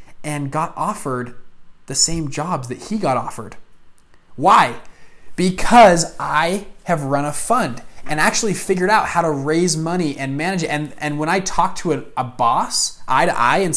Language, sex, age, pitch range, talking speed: English, male, 20-39, 135-165 Hz, 180 wpm